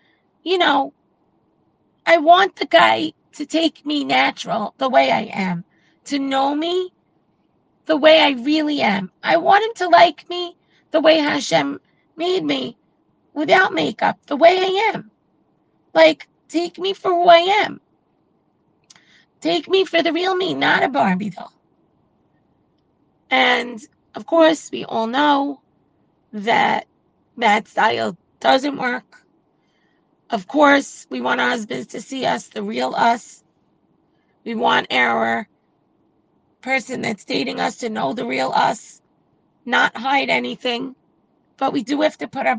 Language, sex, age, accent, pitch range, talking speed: English, female, 30-49, American, 245-335 Hz, 140 wpm